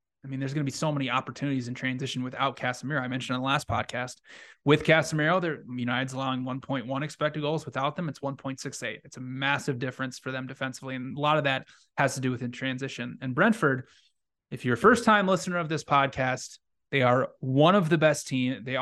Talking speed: 210 wpm